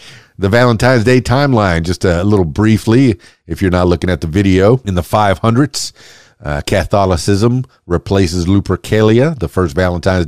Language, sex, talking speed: English, male, 145 wpm